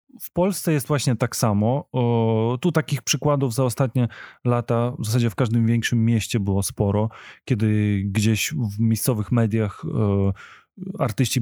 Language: Polish